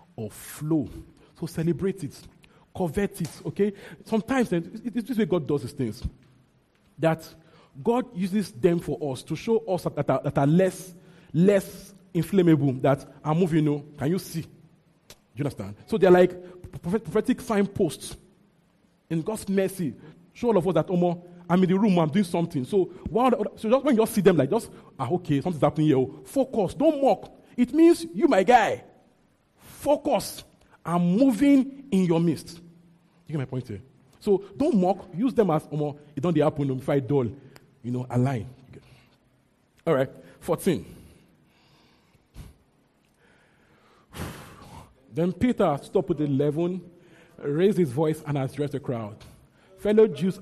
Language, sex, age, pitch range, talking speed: English, male, 40-59, 145-195 Hz, 160 wpm